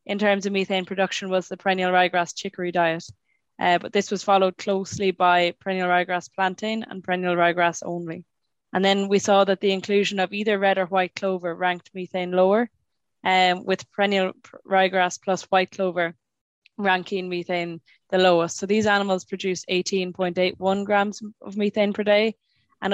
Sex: female